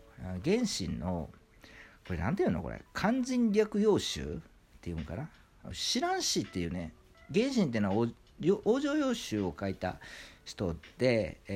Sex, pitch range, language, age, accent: male, 90-150 Hz, Japanese, 50-69, native